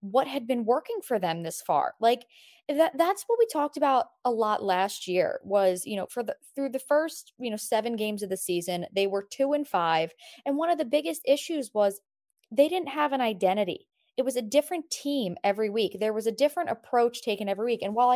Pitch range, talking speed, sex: 205-285 Hz, 220 wpm, female